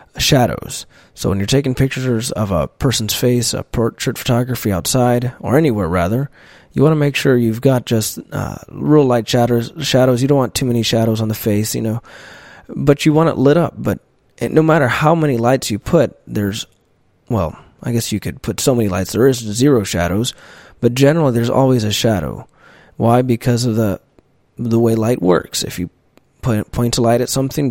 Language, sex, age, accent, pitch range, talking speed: English, male, 20-39, American, 110-130 Hz, 195 wpm